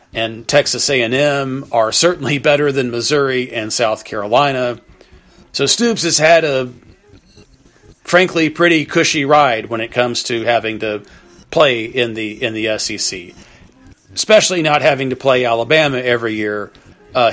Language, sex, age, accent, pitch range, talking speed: English, male, 40-59, American, 120-150 Hz, 150 wpm